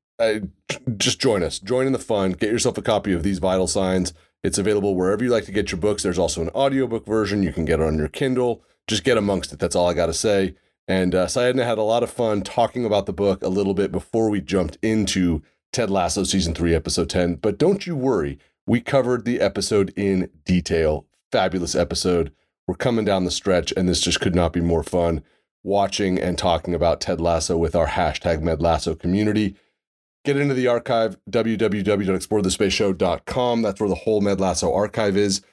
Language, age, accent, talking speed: English, 30-49, American, 205 wpm